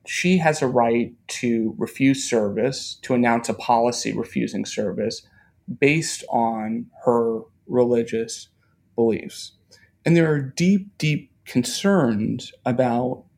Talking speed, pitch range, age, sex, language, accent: 110 wpm, 115-140 Hz, 30-49, male, English, American